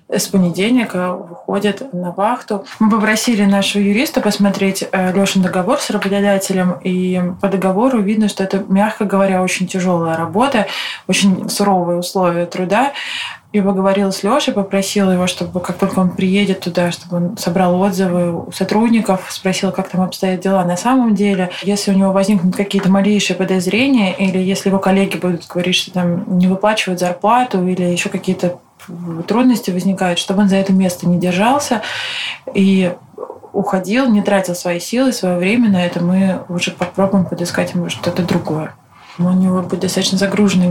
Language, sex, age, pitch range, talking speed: Russian, female, 20-39, 180-200 Hz, 160 wpm